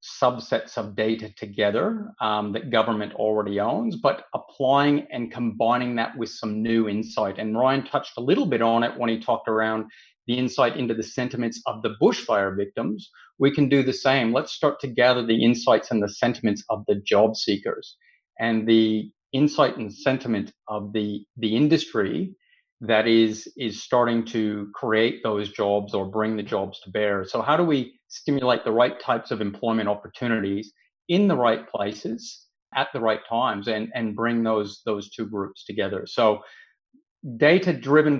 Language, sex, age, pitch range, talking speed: English, male, 30-49, 110-125 Hz, 170 wpm